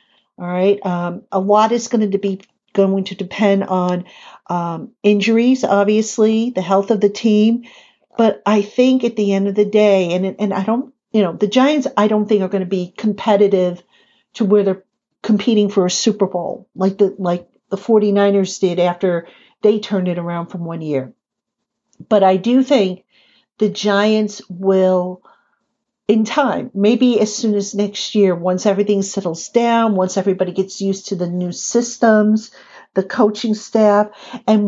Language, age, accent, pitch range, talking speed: English, 50-69, American, 185-215 Hz, 170 wpm